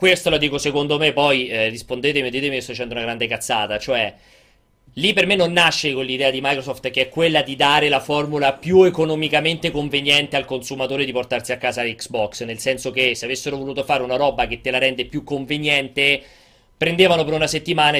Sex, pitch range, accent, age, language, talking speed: male, 130-185 Hz, native, 30-49, Italian, 205 wpm